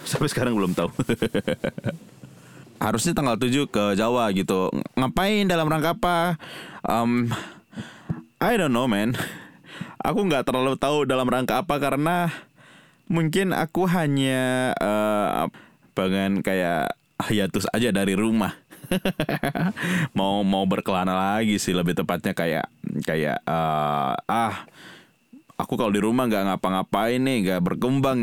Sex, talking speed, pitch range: male, 120 wpm, 105-155 Hz